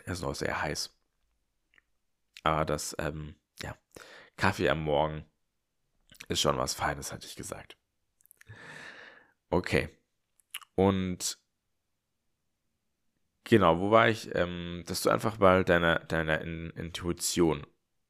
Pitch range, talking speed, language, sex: 75-95 Hz, 115 wpm, German, male